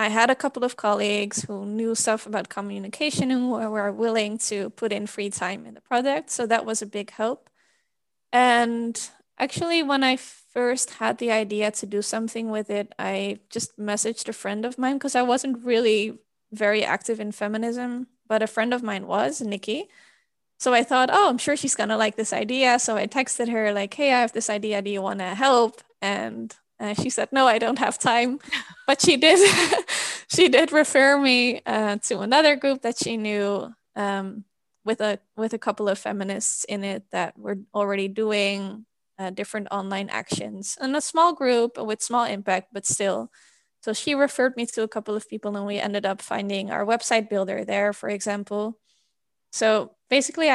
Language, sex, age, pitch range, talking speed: English, female, 20-39, 205-245 Hz, 190 wpm